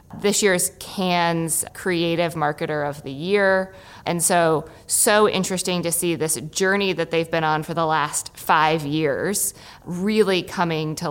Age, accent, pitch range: 20-39, American, 160-195 Hz